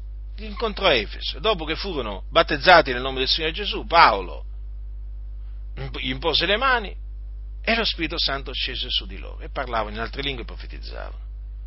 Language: Italian